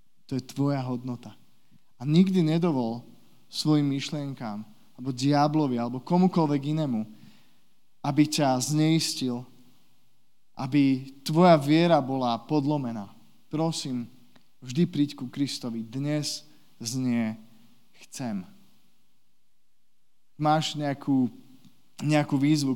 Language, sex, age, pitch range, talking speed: Slovak, male, 20-39, 120-150 Hz, 90 wpm